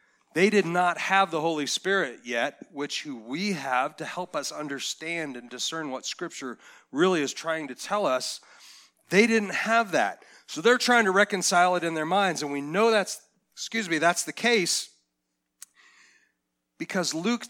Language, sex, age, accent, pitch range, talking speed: English, male, 40-59, American, 155-200 Hz, 170 wpm